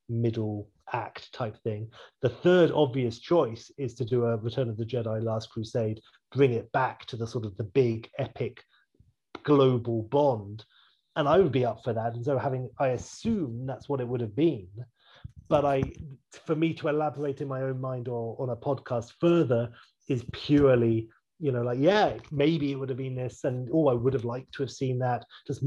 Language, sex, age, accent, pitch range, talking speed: English, male, 30-49, British, 115-140 Hz, 205 wpm